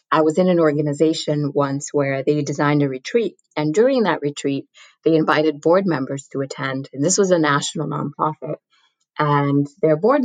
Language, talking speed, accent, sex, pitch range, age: English, 175 wpm, American, female, 145-180 Hz, 20-39